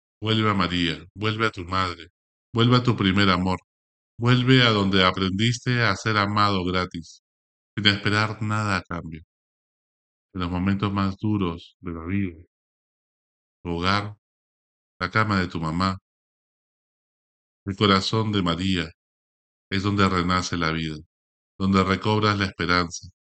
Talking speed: 135 wpm